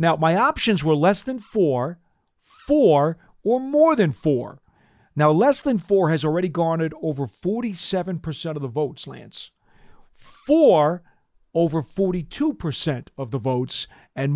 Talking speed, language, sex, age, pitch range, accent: 135 wpm, English, male, 50-69, 140-185 Hz, American